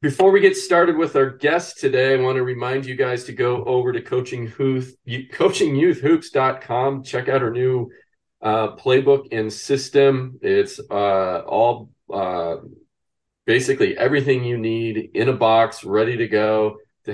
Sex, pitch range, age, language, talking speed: male, 110-135 Hz, 40-59, English, 160 wpm